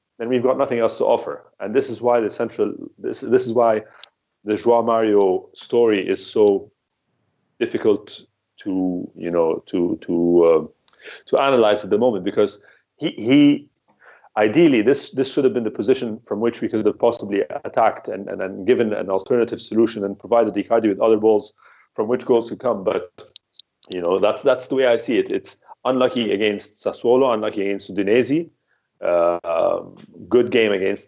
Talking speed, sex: 180 wpm, male